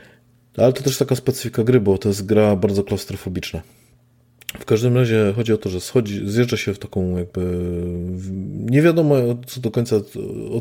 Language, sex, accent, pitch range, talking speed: Polish, male, native, 100-125 Hz, 175 wpm